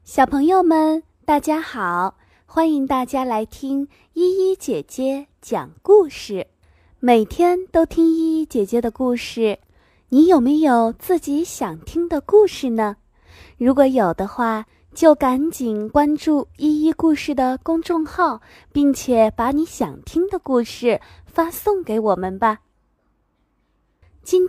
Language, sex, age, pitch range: Chinese, female, 20-39, 220-325 Hz